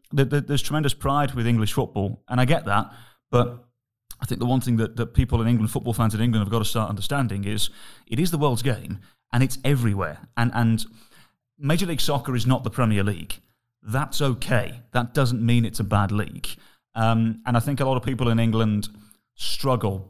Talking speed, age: 205 wpm, 30-49